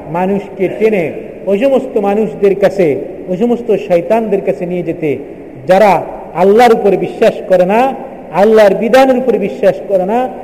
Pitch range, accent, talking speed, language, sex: 180-235 Hz, native, 140 wpm, Bengali, male